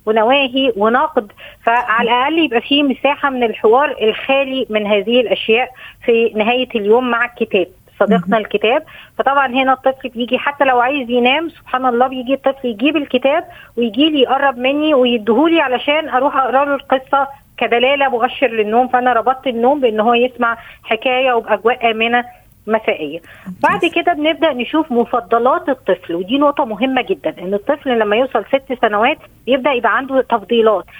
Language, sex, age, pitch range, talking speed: Arabic, female, 20-39, 225-280 Hz, 145 wpm